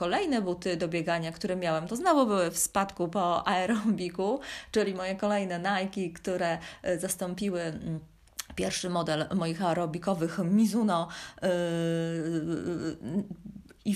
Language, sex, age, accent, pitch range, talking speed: Polish, female, 20-39, native, 170-205 Hz, 110 wpm